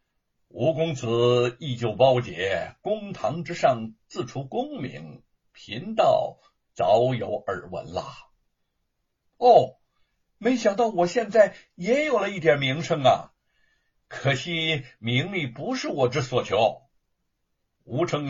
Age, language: 60-79, Chinese